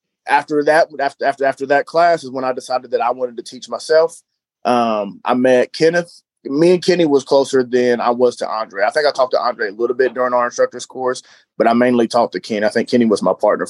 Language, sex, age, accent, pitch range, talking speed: English, male, 30-49, American, 125-155 Hz, 245 wpm